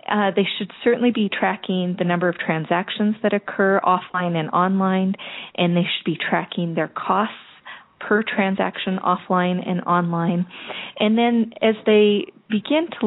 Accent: American